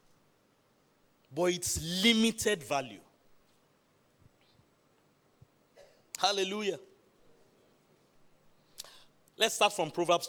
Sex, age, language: male, 30-49, English